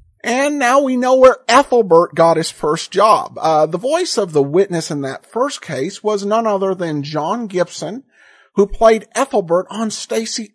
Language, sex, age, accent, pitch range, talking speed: English, male, 50-69, American, 170-250 Hz, 175 wpm